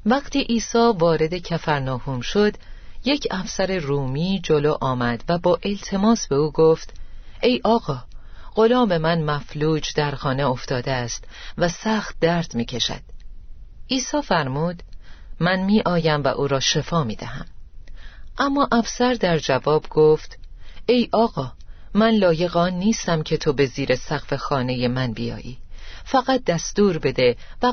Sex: female